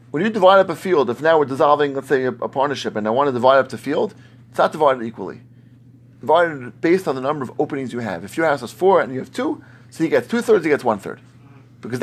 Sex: male